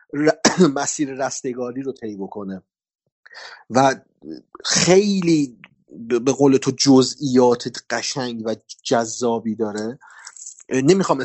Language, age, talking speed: Persian, 30-49, 85 wpm